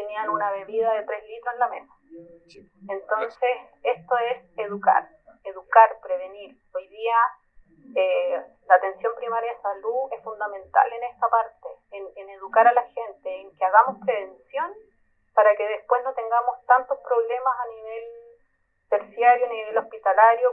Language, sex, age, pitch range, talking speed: Spanish, female, 30-49, 210-260 Hz, 150 wpm